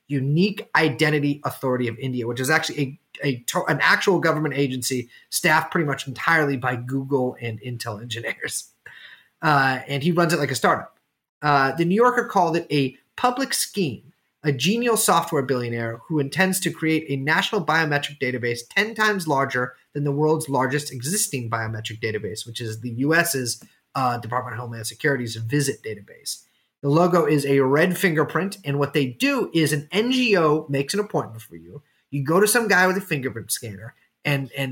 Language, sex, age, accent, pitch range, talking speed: English, male, 30-49, American, 125-170 Hz, 175 wpm